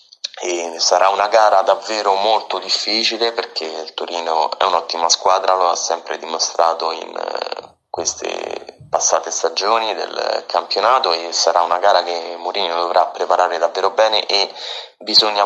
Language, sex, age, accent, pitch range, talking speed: Italian, male, 30-49, native, 85-100 Hz, 135 wpm